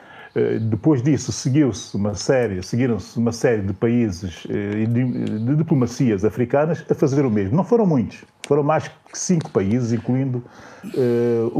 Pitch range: 115-150 Hz